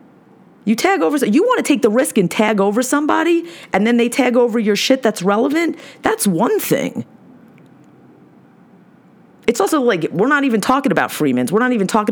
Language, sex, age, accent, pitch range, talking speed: English, female, 30-49, American, 190-260 Hz, 190 wpm